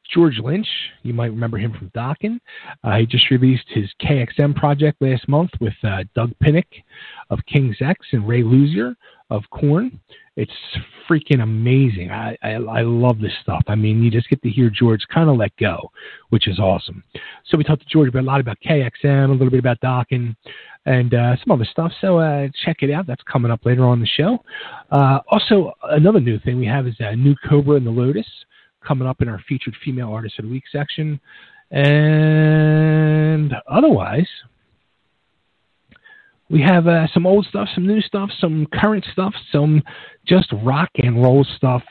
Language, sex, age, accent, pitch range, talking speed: English, male, 40-59, American, 115-150 Hz, 185 wpm